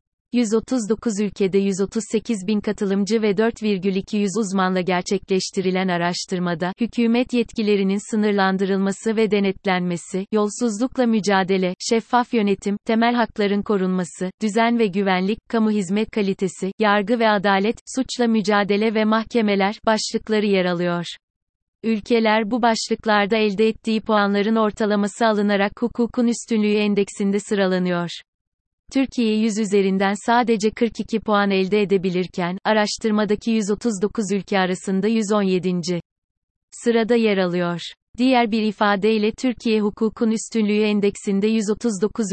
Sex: female